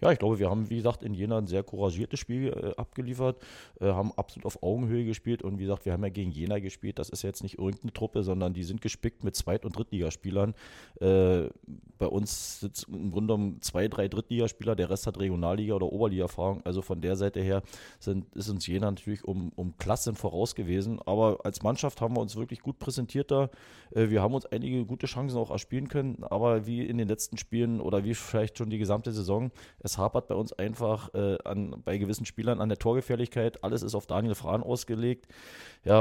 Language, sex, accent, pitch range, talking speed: German, male, German, 95-115 Hz, 205 wpm